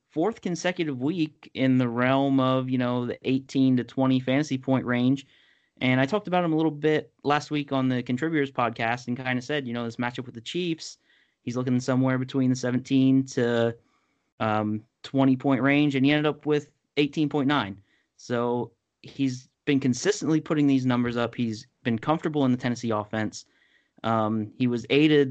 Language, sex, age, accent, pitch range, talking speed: English, male, 30-49, American, 120-145 Hz, 185 wpm